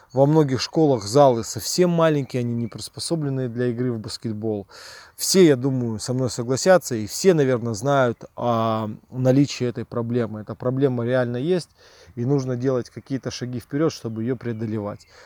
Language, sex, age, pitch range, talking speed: Russian, male, 20-39, 115-140 Hz, 155 wpm